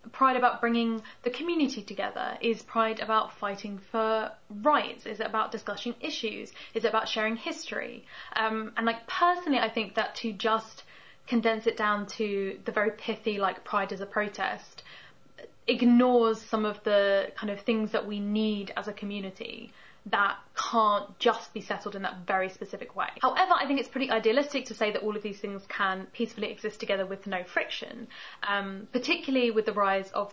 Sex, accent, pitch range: female, British, 205-235 Hz